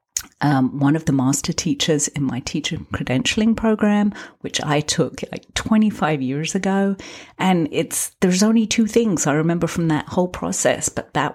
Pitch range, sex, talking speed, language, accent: 135-185 Hz, female, 170 wpm, English, British